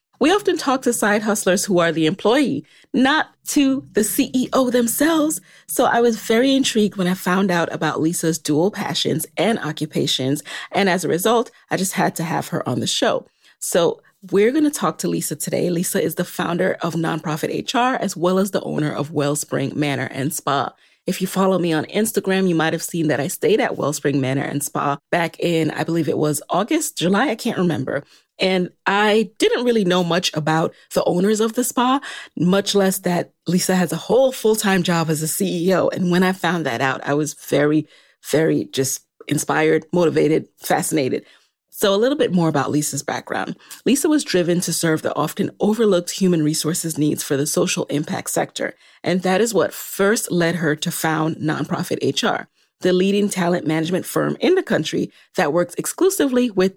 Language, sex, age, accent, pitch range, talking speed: English, female, 30-49, American, 155-210 Hz, 190 wpm